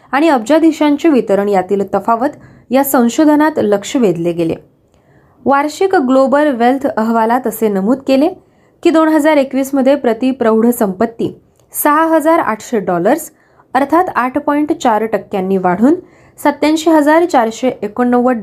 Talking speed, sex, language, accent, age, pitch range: 95 wpm, female, Marathi, native, 20-39, 210-275 Hz